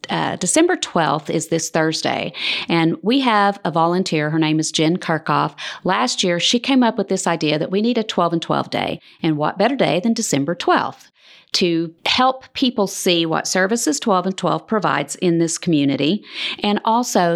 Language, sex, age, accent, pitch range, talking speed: English, female, 40-59, American, 160-205 Hz, 185 wpm